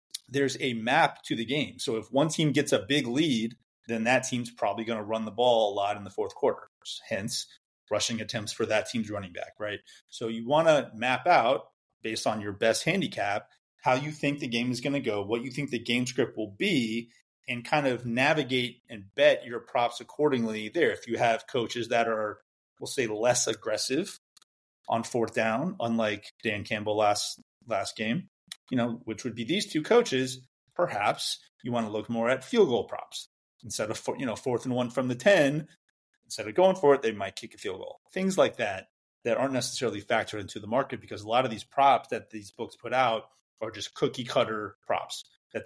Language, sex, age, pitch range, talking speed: English, male, 30-49, 110-140 Hz, 210 wpm